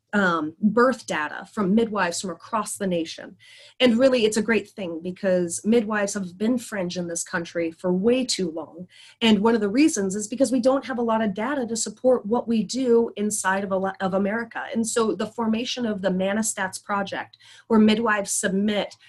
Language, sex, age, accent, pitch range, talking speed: English, female, 30-49, American, 185-230 Hz, 190 wpm